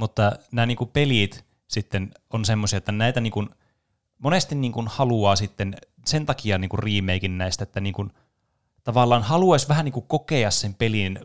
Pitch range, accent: 100-120 Hz, native